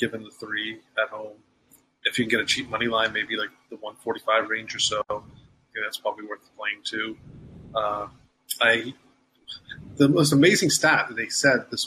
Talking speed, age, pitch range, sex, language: 175 wpm, 30-49, 110-135 Hz, male, English